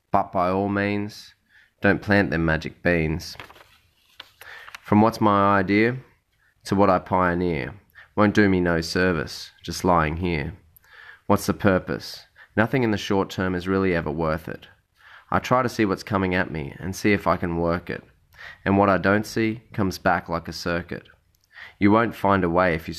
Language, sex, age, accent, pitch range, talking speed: English, male, 20-39, Australian, 85-100 Hz, 185 wpm